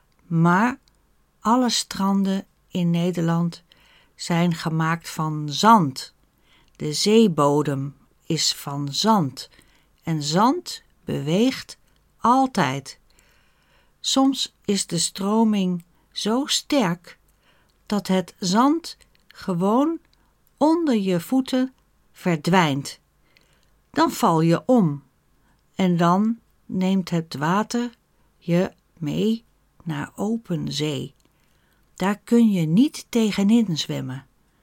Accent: Dutch